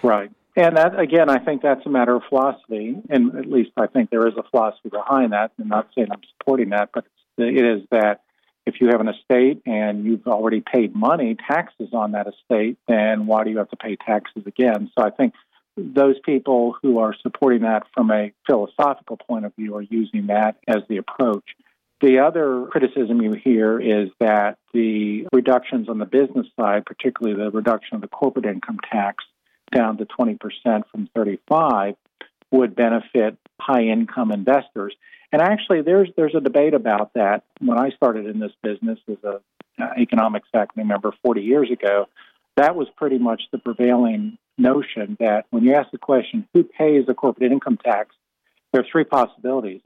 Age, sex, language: 50-69, male, English